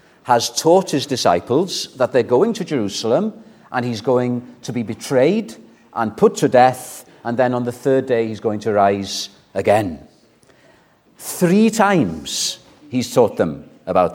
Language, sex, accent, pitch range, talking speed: English, male, British, 120-160 Hz, 155 wpm